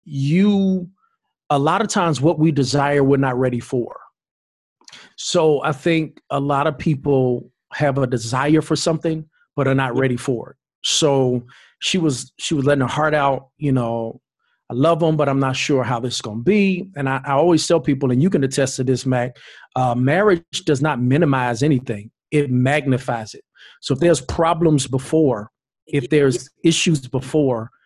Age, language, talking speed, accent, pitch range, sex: 40-59, English, 185 wpm, American, 130-155 Hz, male